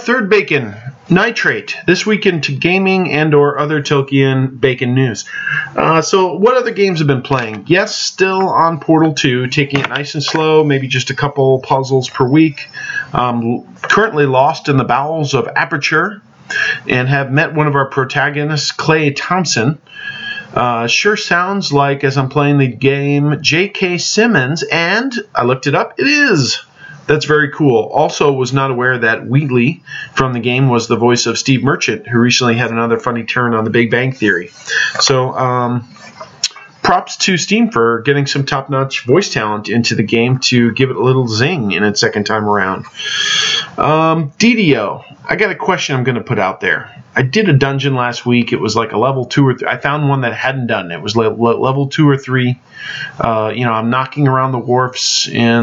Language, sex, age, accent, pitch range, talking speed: English, male, 40-59, American, 120-150 Hz, 190 wpm